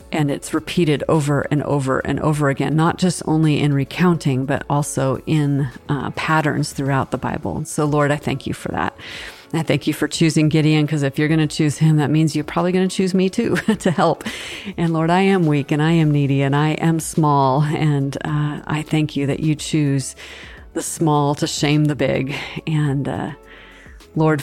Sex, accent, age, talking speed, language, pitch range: female, American, 40-59, 205 wpm, English, 140-160 Hz